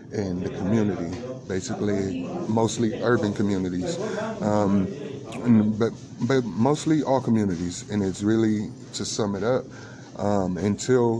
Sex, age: male, 30-49